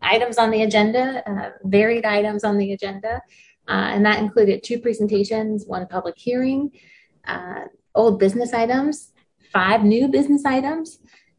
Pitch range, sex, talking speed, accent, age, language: 185-225 Hz, female, 140 wpm, American, 30-49, English